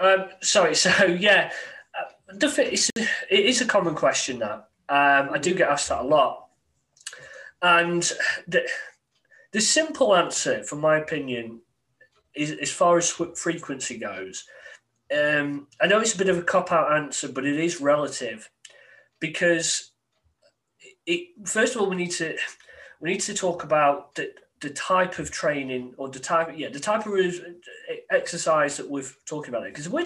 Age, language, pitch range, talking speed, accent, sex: 30-49, English, 145-195 Hz, 155 wpm, British, male